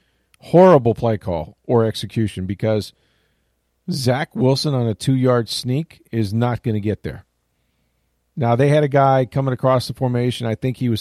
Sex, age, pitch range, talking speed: male, 40-59, 95-120 Hz, 170 wpm